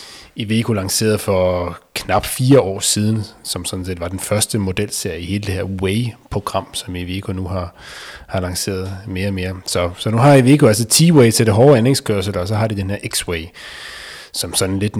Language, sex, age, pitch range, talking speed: Danish, male, 30-49, 100-125 Hz, 205 wpm